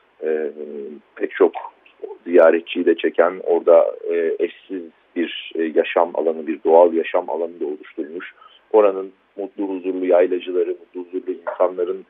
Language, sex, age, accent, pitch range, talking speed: Turkish, male, 50-69, native, 315-440 Hz, 130 wpm